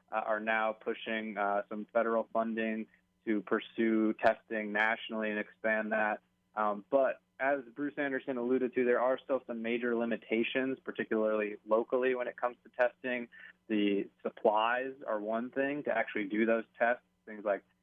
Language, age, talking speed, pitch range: English, 20-39, 160 wpm, 105-115 Hz